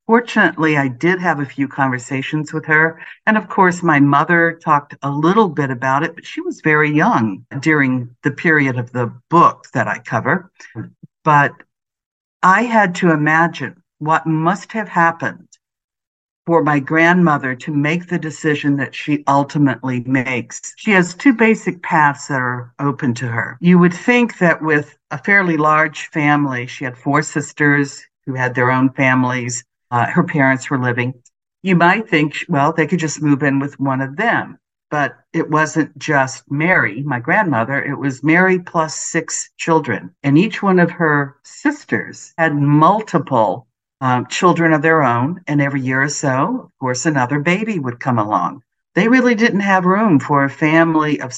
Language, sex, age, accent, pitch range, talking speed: English, female, 60-79, American, 135-170 Hz, 170 wpm